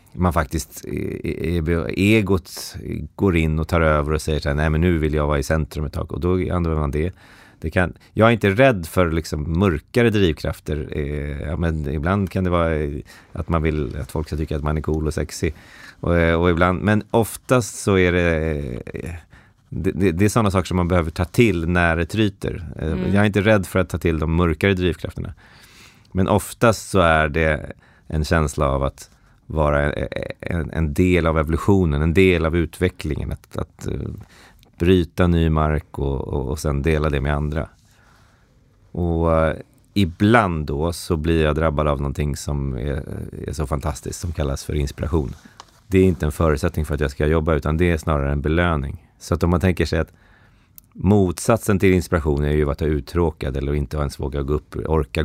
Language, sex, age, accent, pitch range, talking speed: Swedish, male, 30-49, native, 75-95 Hz, 195 wpm